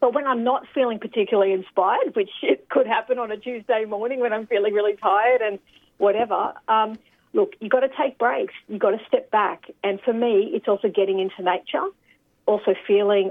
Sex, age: female, 40-59